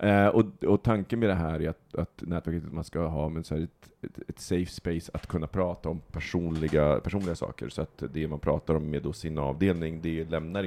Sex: male